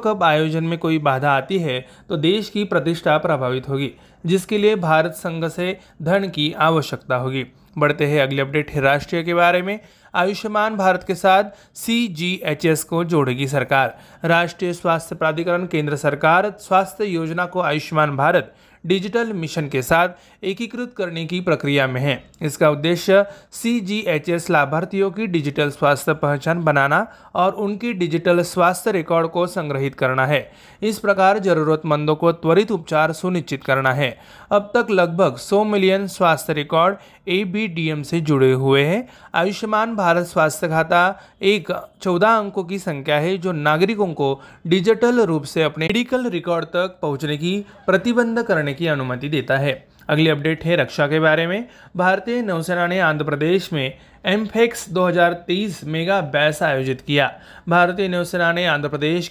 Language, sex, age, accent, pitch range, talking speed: Marathi, male, 30-49, native, 150-195 Hz, 155 wpm